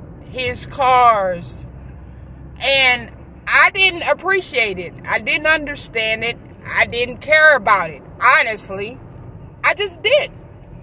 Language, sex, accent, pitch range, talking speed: English, female, American, 205-310 Hz, 110 wpm